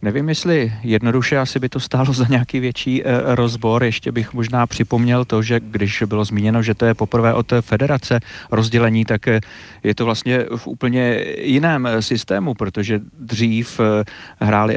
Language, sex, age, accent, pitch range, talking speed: Czech, male, 40-59, native, 110-125 Hz, 155 wpm